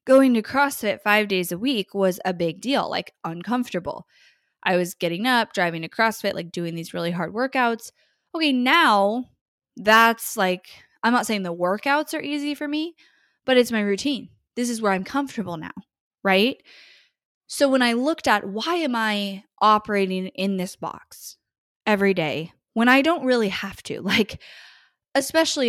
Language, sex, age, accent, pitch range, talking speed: English, female, 20-39, American, 185-245 Hz, 170 wpm